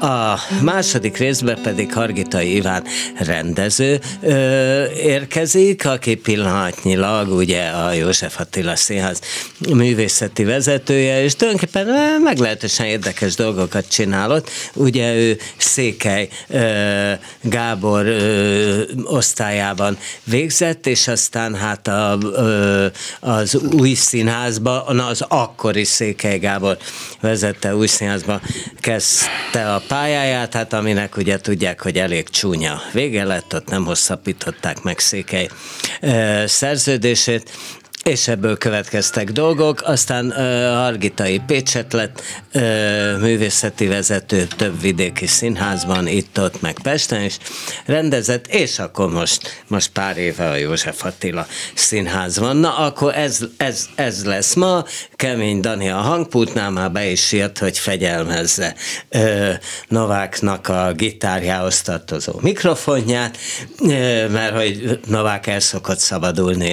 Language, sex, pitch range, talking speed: Hungarian, male, 100-125 Hz, 110 wpm